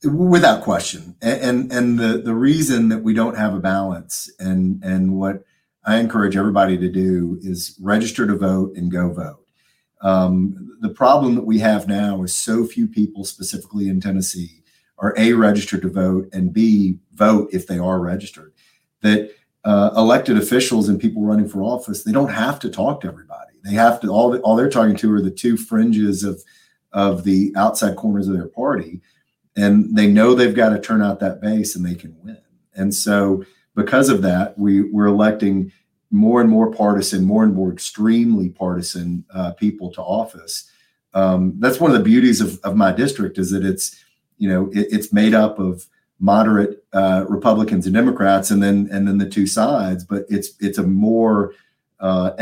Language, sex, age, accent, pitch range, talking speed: English, male, 40-59, American, 95-110 Hz, 185 wpm